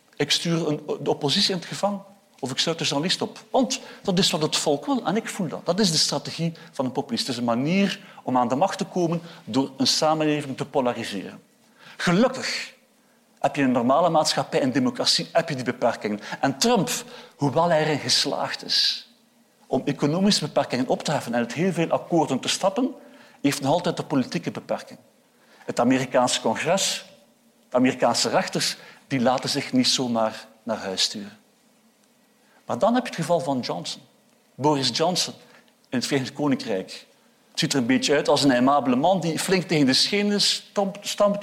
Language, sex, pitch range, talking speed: Dutch, male, 145-230 Hz, 185 wpm